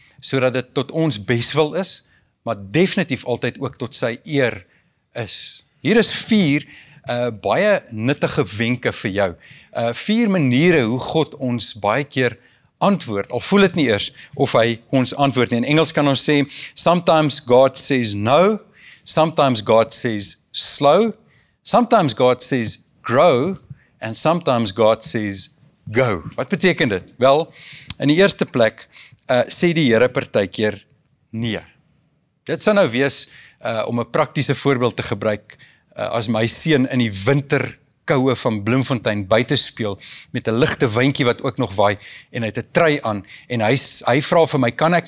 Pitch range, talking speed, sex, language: 115-155 Hz, 165 wpm, male, English